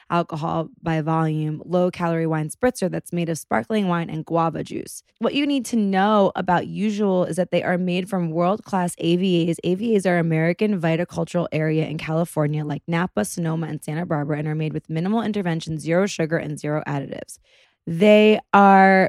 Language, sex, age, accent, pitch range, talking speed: English, female, 20-39, American, 170-215 Hz, 180 wpm